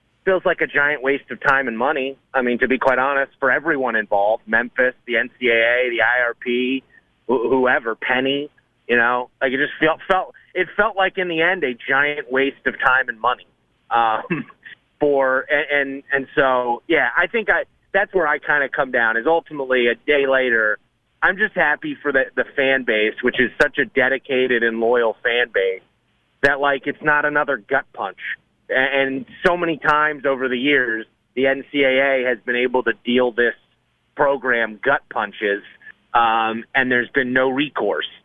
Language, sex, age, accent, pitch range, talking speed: English, male, 30-49, American, 125-150 Hz, 175 wpm